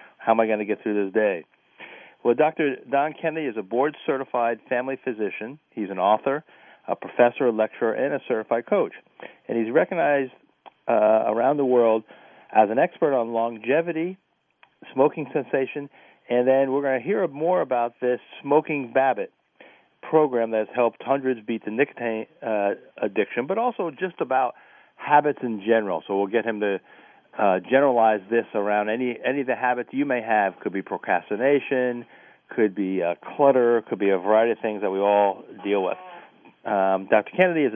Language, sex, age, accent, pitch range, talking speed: English, male, 50-69, American, 110-140 Hz, 175 wpm